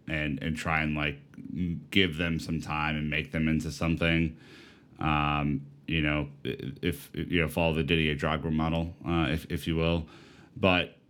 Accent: American